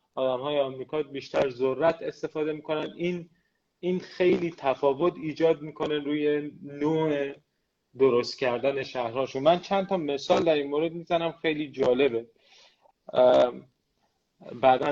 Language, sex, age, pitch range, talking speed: Persian, male, 30-49, 130-165 Hz, 120 wpm